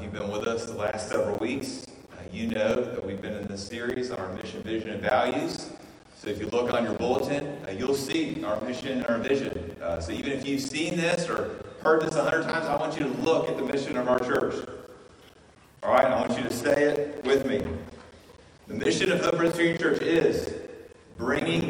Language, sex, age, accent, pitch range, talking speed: English, male, 30-49, American, 120-165 Hz, 220 wpm